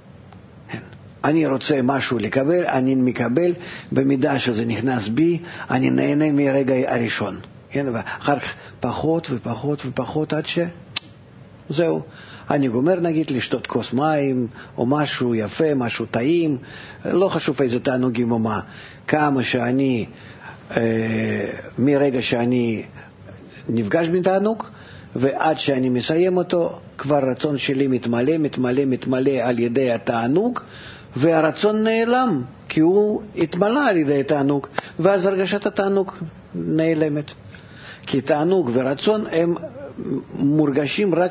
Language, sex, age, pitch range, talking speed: Hebrew, male, 50-69, 125-165 Hz, 115 wpm